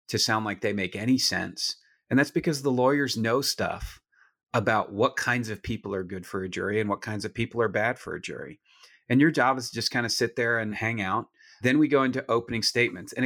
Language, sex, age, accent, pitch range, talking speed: English, male, 40-59, American, 105-130 Hz, 245 wpm